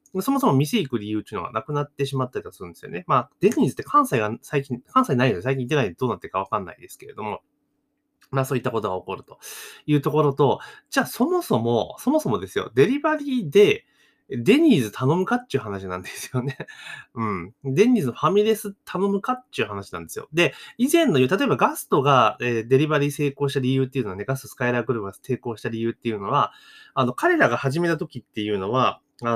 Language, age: Japanese, 20-39